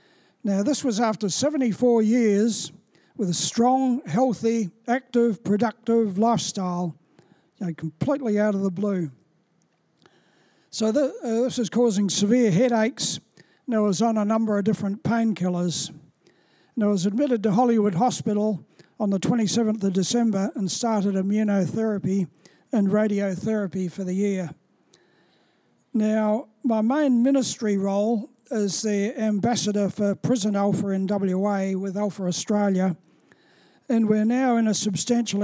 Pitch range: 195-230 Hz